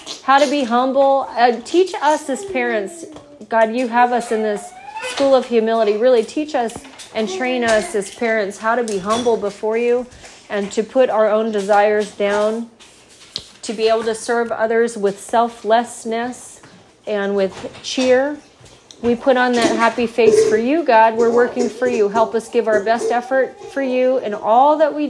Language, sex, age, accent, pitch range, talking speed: English, female, 30-49, American, 225-290 Hz, 175 wpm